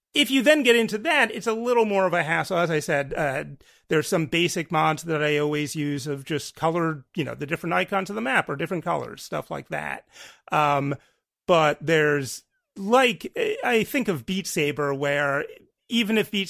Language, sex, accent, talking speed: English, male, American, 200 wpm